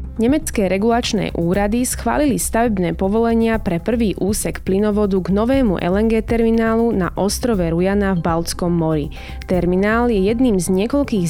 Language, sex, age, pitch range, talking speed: Slovak, female, 20-39, 180-230 Hz, 135 wpm